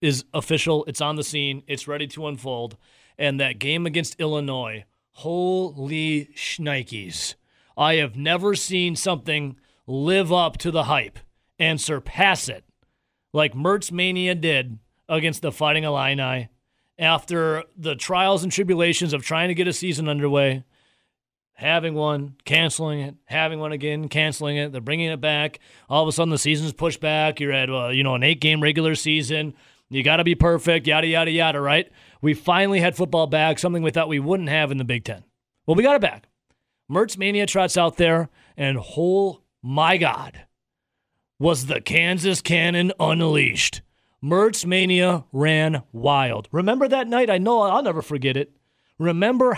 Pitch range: 145-175 Hz